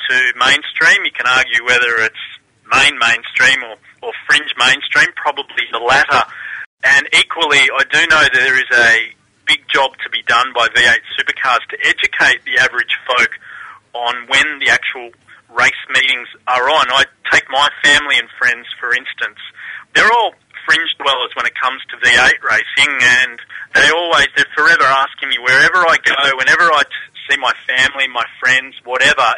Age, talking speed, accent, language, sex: 30-49, 165 wpm, Australian, English, male